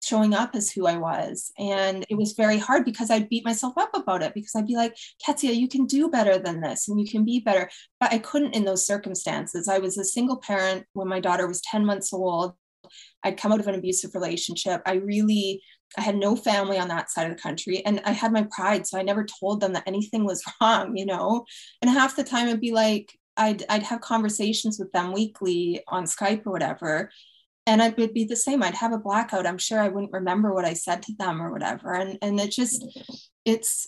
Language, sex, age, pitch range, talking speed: English, female, 20-39, 190-235 Hz, 230 wpm